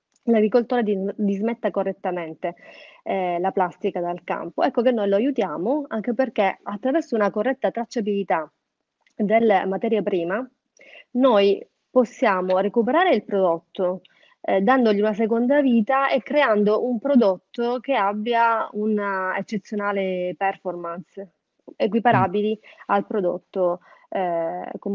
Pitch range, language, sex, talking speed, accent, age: 195-225 Hz, Italian, female, 115 wpm, native, 30-49